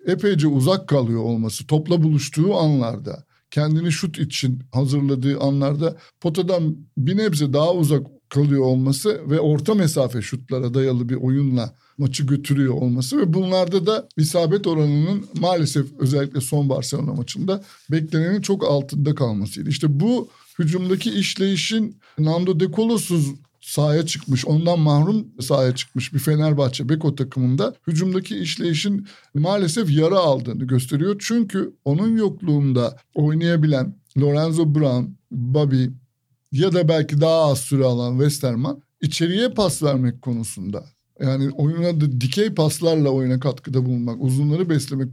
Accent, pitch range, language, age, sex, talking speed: native, 135-170 Hz, Turkish, 60-79, male, 125 wpm